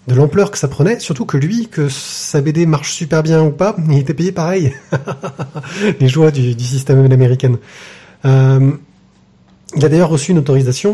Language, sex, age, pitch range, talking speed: French, male, 30-49, 125-155 Hz, 180 wpm